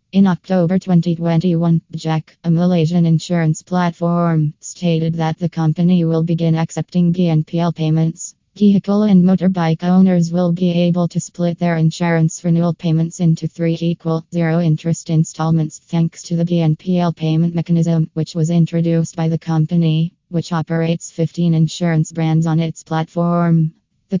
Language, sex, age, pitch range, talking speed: Malay, female, 20-39, 160-175 Hz, 140 wpm